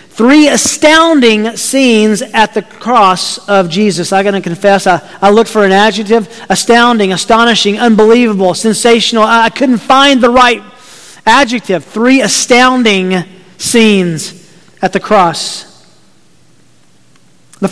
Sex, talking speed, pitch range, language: male, 120 wpm, 190-255 Hz, English